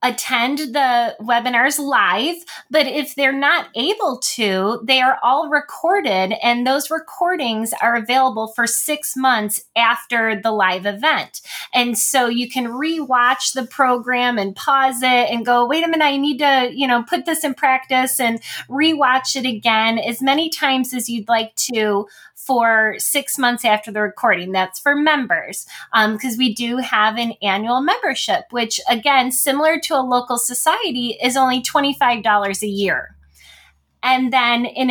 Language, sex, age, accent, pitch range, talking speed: English, female, 20-39, American, 230-280 Hz, 160 wpm